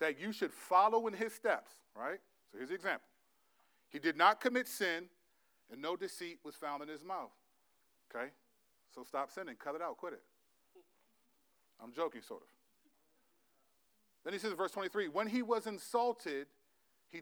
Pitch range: 125-195 Hz